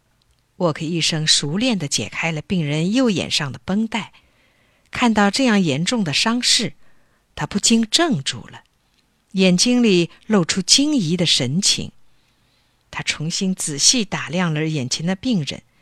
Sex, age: female, 50-69